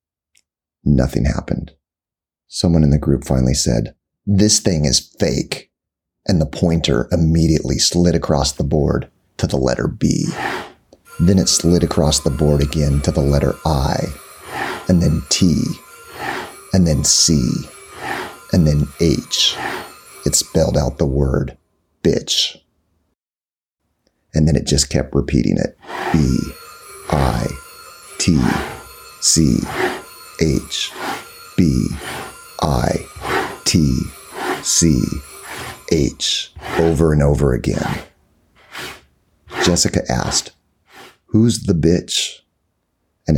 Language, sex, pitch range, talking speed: English, male, 70-85 Hz, 100 wpm